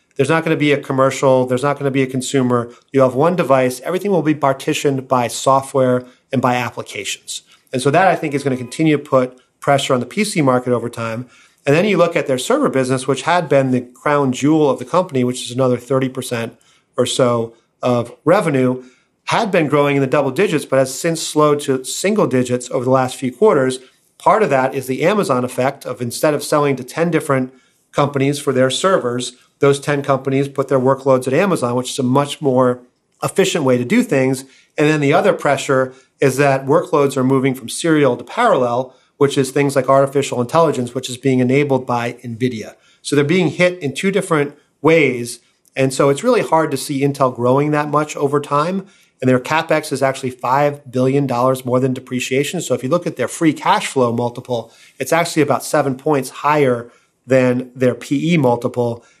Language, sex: English, male